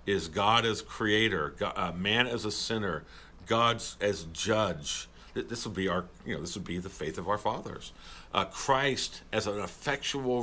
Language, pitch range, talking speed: English, 95-125 Hz, 185 wpm